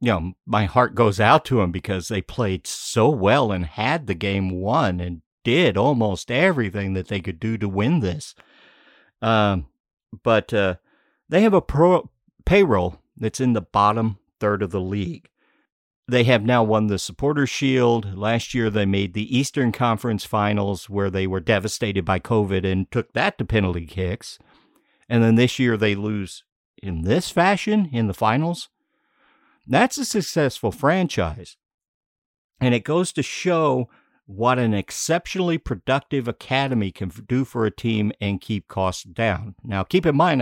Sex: male